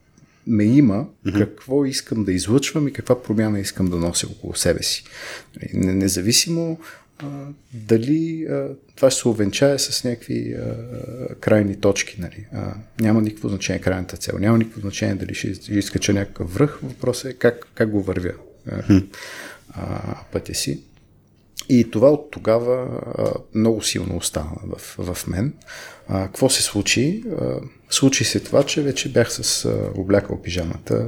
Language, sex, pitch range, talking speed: Bulgarian, male, 100-125 Hz, 155 wpm